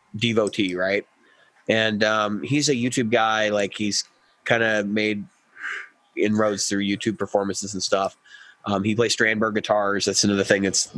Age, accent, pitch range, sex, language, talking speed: 20-39, American, 100-120 Hz, male, English, 155 wpm